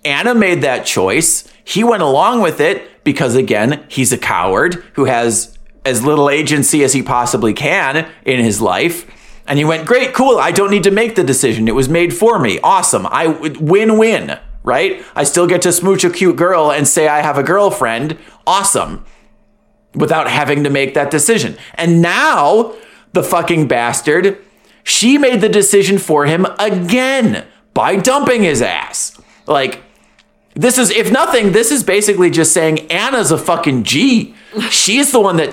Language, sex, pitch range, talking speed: English, male, 145-205 Hz, 170 wpm